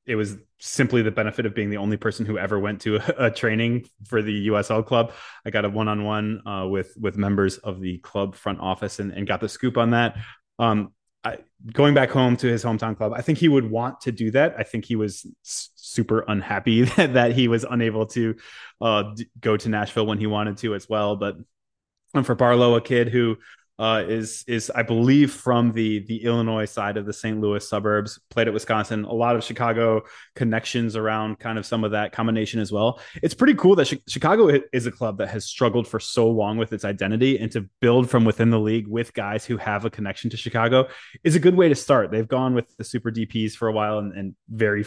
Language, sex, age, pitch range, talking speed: English, male, 20-39, 105-120 Hz, 225 wpm